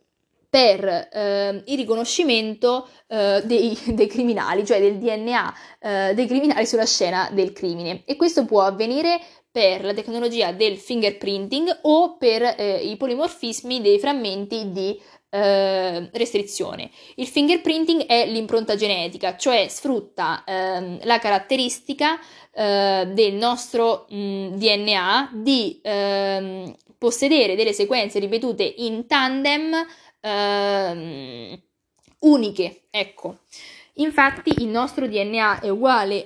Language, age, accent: Italian, 20-39, native